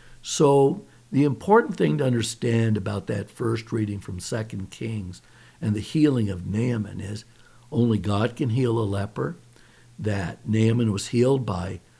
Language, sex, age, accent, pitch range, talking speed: English, male, 60-79, American, 110-130 Hz, 150 wpm